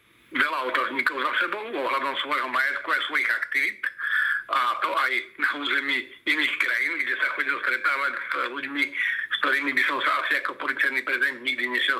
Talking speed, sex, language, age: 170 wpm, male, Slovak, 60-79